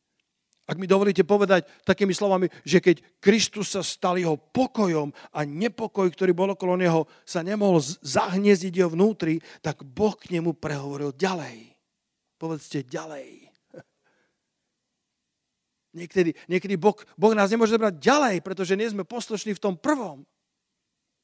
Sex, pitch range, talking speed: male, 175-215 Hz, 125 wpm